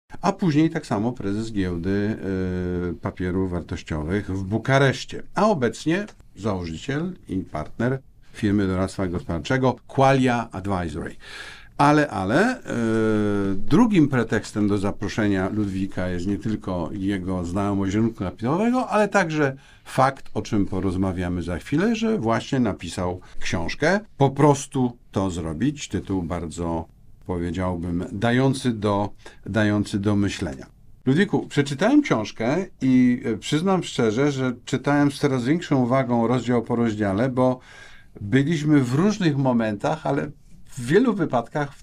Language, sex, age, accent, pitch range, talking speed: Polish, male, 50-69, native, 100-140 Hz, 120 wpm